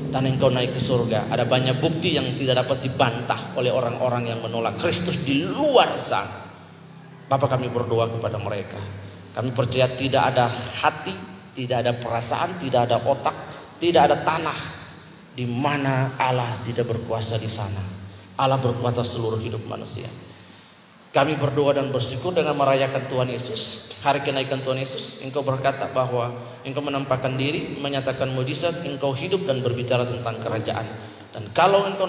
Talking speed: 150 wpm